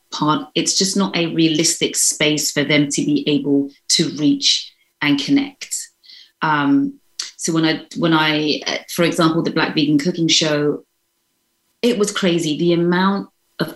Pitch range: 150-190 Hz